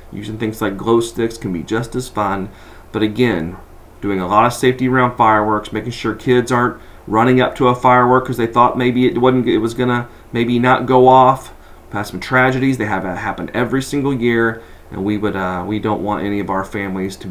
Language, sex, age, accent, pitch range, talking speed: English, male, 40-59, American, 105-135 Hz, 220 wpm